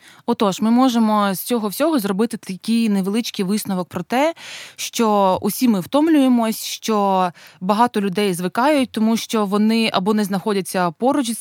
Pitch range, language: 180-230 Hz, Ukrainian